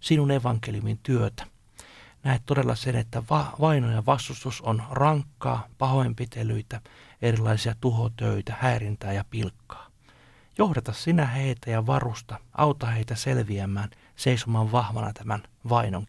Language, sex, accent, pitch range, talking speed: Finnish, male, native, 110-140 Hz, 115 wpm